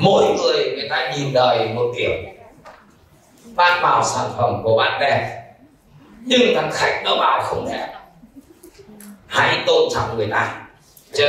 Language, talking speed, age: Vietnamese, 150 wpm, 30-49